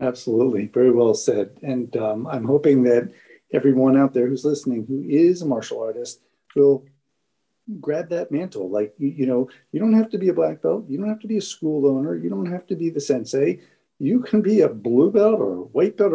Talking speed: 225 wpm